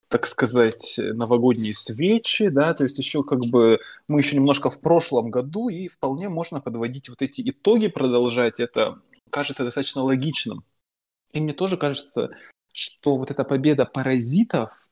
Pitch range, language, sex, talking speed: 125-150 Hz, Ukrainian, male, 150 wpm